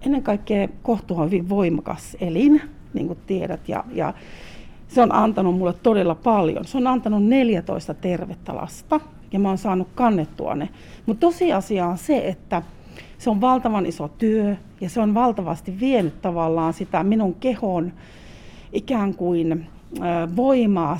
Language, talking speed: Finnish, 145 wpm